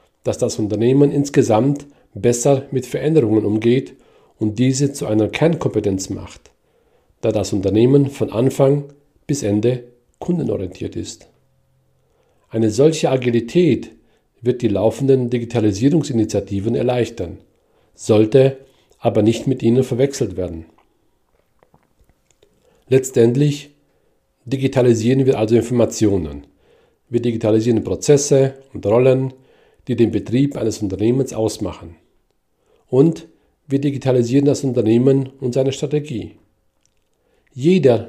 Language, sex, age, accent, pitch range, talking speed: German, male, 40-59, German, 110-140 Hz, 100 wpm